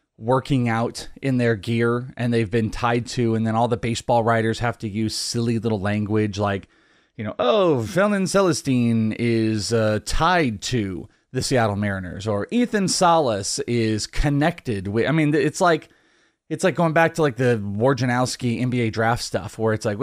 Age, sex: 30-49, male